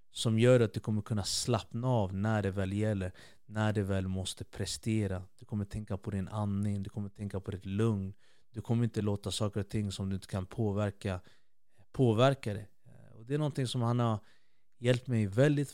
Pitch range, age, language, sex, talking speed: 100-130 Hz, 30-49, Swedish, male, 200 wpm